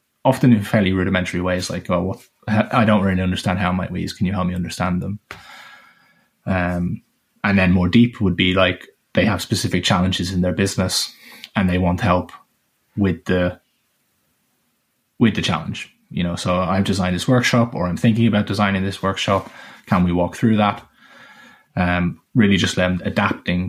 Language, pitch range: English, 90-105 Hz